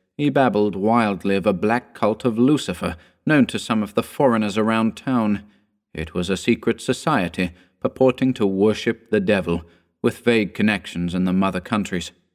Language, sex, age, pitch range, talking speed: English, male, 40-59, 90-115 Hz, 165 wpm